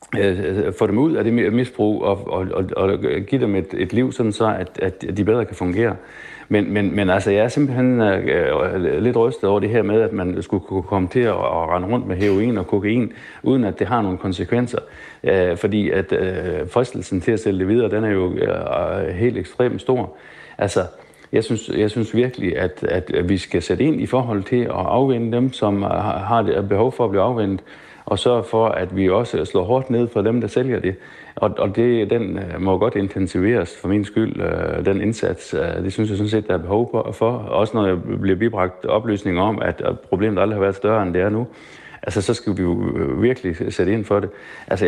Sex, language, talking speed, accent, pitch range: male, Danish, 210 wpm, native, 95-115 Hz